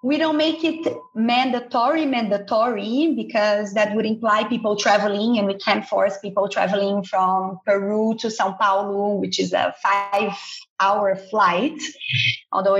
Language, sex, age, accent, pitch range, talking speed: English, female, 30-49, Brazilian, 195-245 Hz, 140 wpm